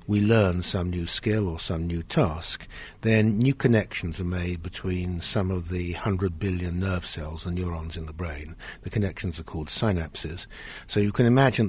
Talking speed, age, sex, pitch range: 185 wpm, 60-79, male, 90-110 Hz